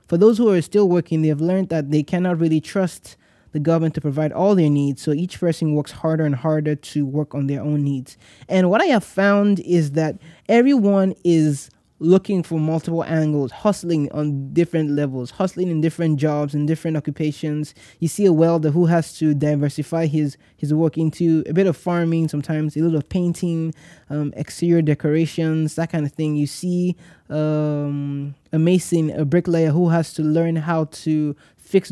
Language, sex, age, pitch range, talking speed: English, male, 20-39, 150-170 Hz, 190 wpm